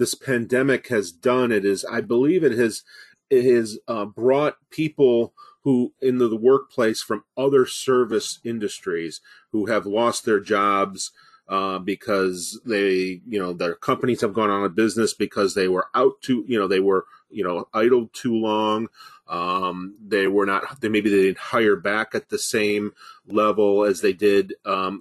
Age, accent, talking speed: 30-49, American, 175 wpm